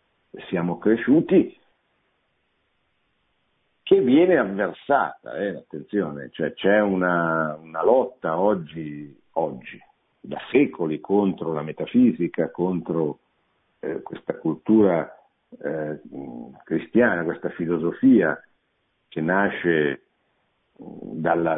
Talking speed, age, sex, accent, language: 85 wpm, 50-69, male, native, Italian